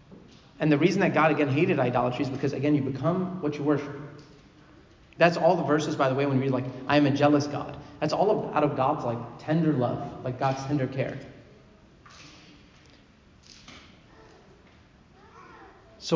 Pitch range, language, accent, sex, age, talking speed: 135-160 Hz, English, American, male, 30-49, 165 wpm